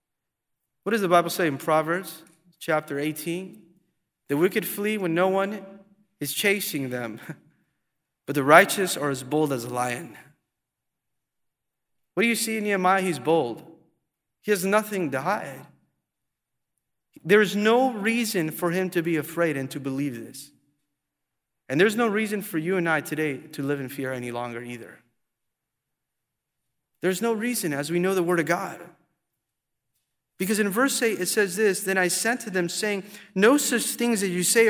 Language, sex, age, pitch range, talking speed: English, male, 30-49, 160-230 Hz, 170 wpm